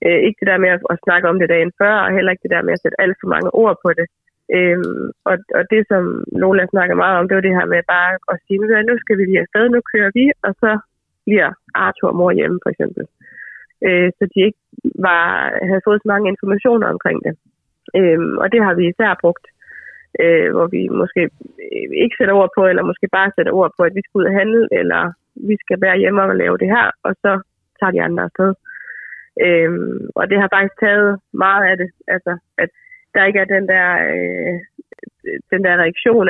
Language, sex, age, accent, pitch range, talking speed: Danish, female, 20-39, native, 180-215 Hz, 220 wpm